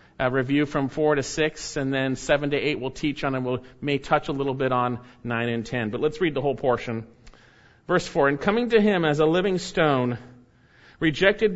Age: 40-59